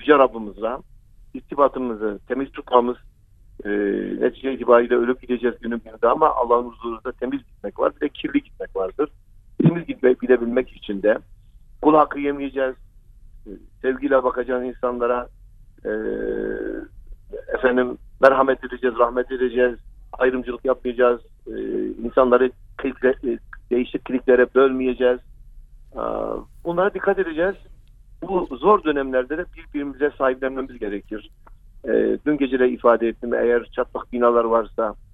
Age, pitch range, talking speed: 50-69, 115-135 Hz, 115 wpm